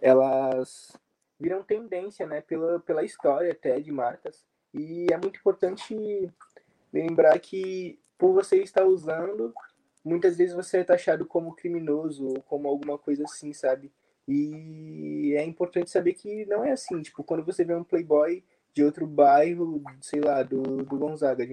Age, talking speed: 20-39, 155 wpm